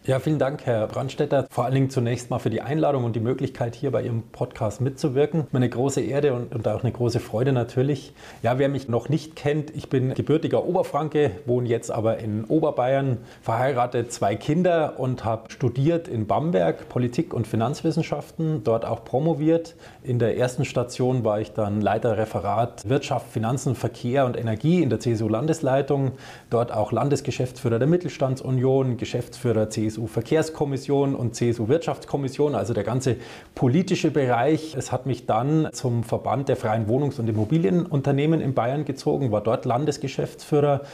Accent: German